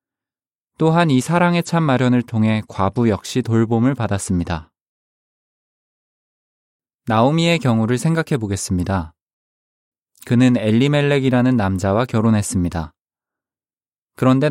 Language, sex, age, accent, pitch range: Korean, male, 20-39, native, 100-135 Hz